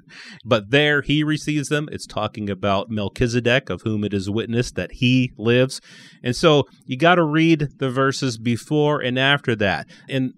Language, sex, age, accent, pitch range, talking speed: English, male, 30-49, American, 110-140 Hz, 175 wpm